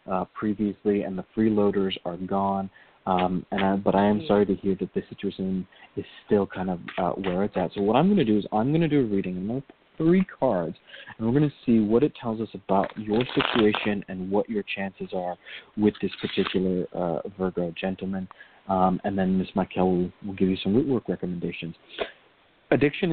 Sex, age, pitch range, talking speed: male, 30-49, 95-115 Hz, 210 wpm